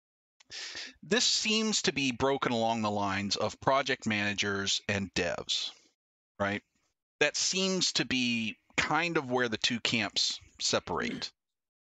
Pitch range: 110-135 Hz